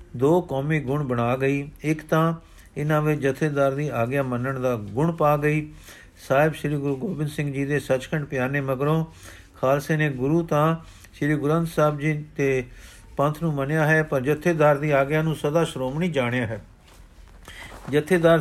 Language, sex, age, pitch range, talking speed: Punjabi, male, 50-69, 135-160 Hz, 165 wpm